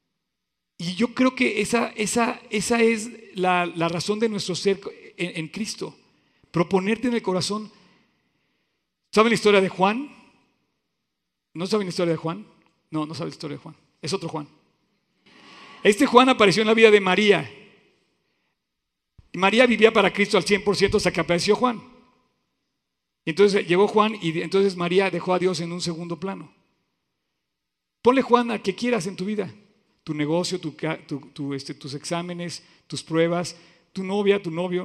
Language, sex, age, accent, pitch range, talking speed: Spanish, male, 50-69, Mexican, 155-205 Hz, 165 wpm